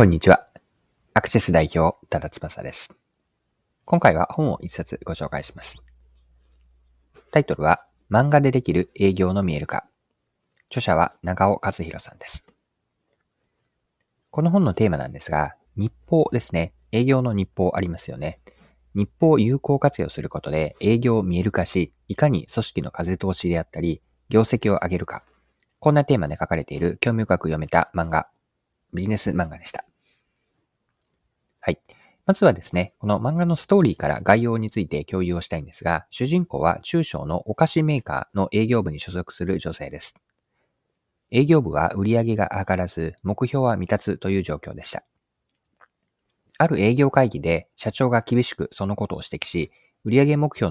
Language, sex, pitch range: Japanese, male, 85-125 Hz